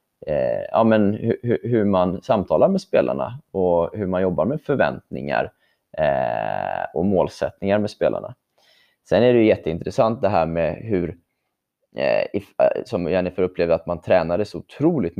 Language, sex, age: Swedish, male, 20-39